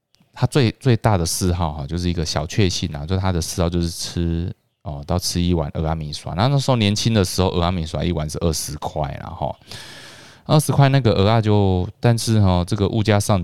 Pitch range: 80-105 Hz